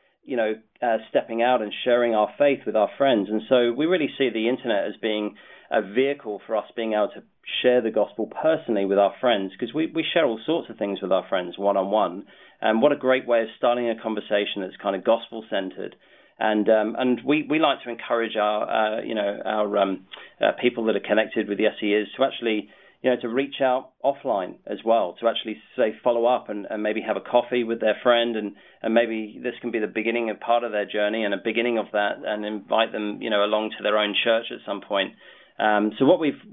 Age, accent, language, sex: 40-59, British, English, male